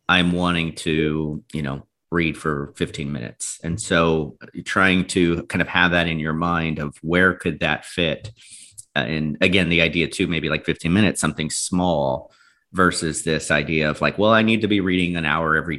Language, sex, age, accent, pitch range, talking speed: English, male, 30-49, American, 80-95 Hz, 190 wpm